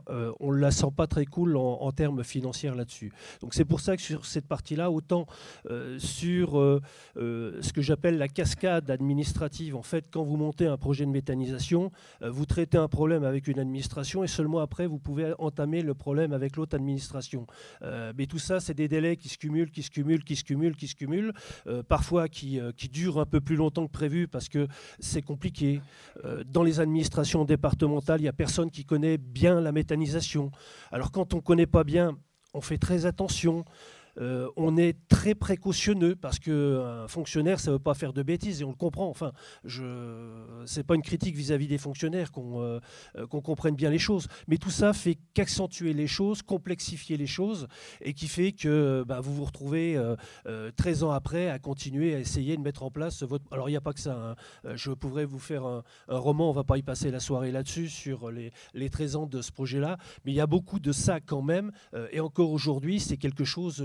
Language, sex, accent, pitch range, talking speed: French, male, French, 135-165 Hz, 220 wpm